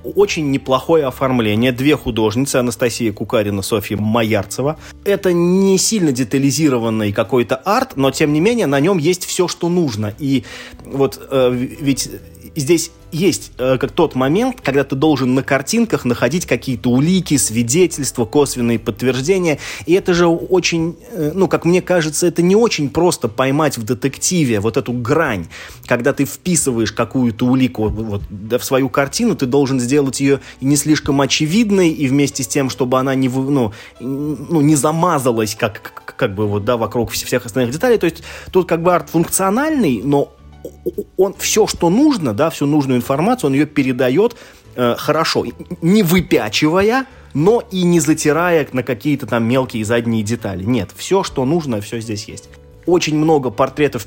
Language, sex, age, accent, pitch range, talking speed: Russian, male, 20-39, native, 120-160 Hz, 155 wpm